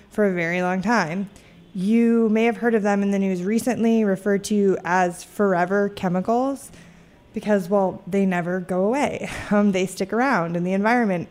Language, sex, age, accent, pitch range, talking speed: English, female, 20-39, American, 185-235 Hz, 175 wpm